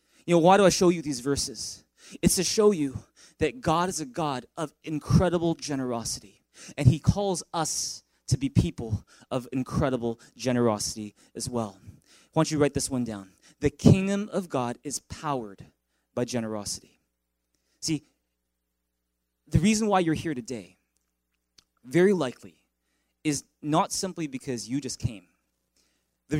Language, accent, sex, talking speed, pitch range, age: English, American, male, 150 wpm, 120-160 Hz, 20-39